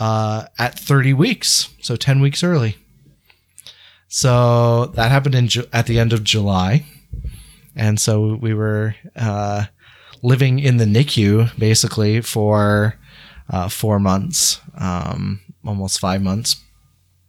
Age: 30-49